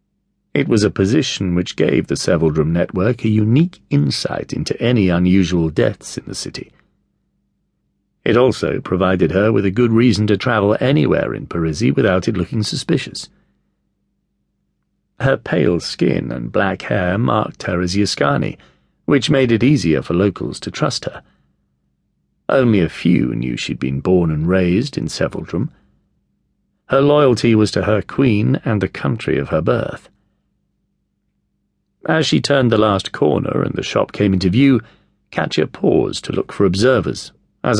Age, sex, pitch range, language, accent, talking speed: 40-59, male, 85-115 Hz, English, British, 155 wpm